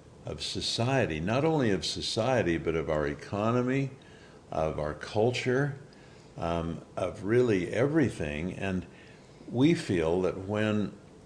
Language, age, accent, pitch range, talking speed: English, 50-69, American, 85-115 Hz, 115 wpm